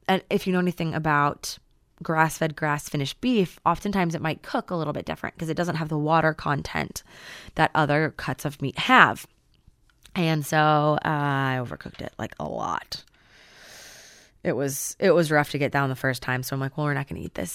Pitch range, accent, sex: 155-220 Hz, American, female